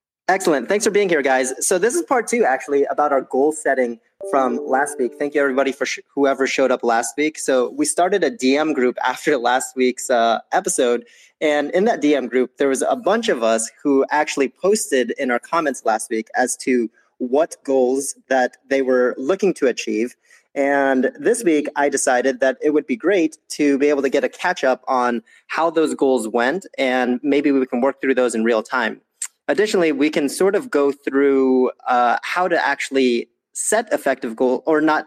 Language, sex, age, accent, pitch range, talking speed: English, male, 30-49, American, 125-150 Hz, 200 wpm